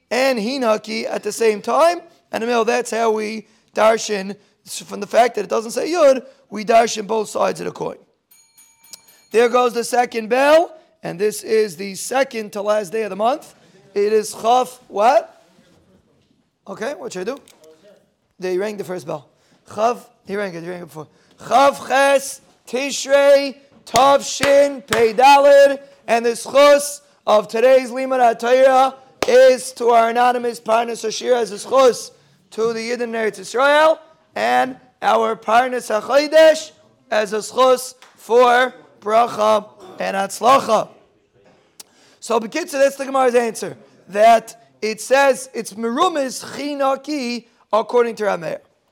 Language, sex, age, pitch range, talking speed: English, male, 30-49, 210-265 Hz, 140 wpm